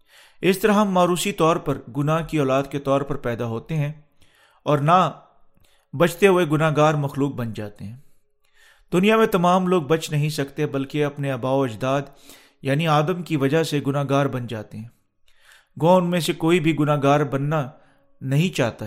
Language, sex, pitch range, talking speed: Urdu, male, 135-170 Hz, 175 wpm